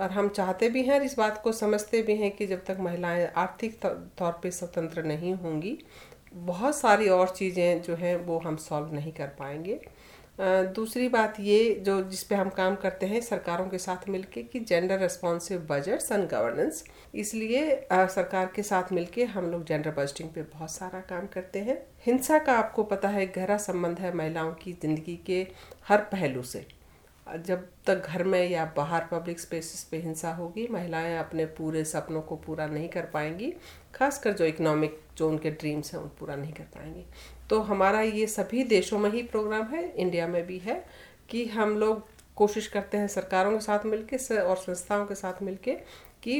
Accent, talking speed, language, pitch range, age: native, 185 wpm, Hindi, 170-215 Hz, 50-69